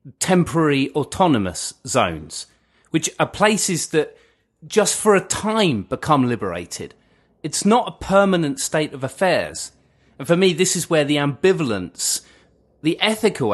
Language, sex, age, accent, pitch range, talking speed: English, male, 30-49, British, 115-165 Hz, 135 wpm